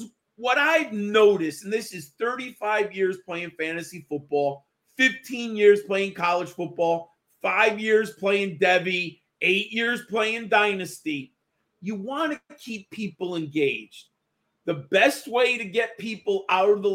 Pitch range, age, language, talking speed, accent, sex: 185-240 Hz, 40-59, English, 140 wpm, American, male